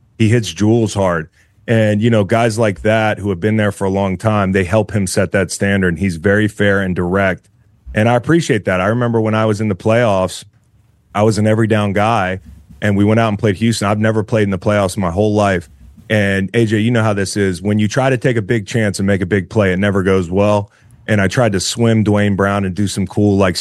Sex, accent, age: male, American, 30-49